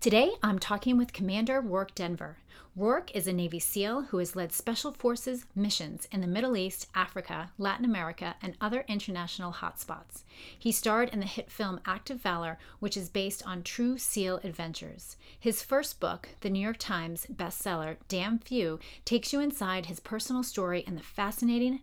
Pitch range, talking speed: 175-230 Hz, 175 wpm